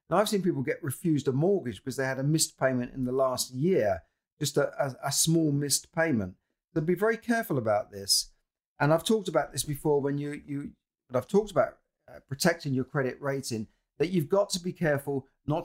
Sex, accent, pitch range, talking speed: male, British, 125-165 Hz, 215 wpm